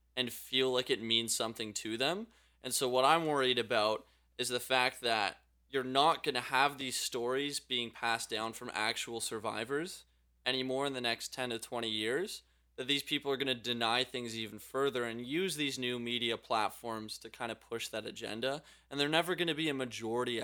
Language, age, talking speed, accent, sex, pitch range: English, 20-39, 205 wpm, American, male, 110-130 Hz